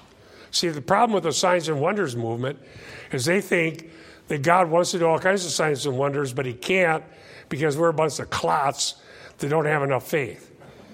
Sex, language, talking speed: male, English, 205 wpm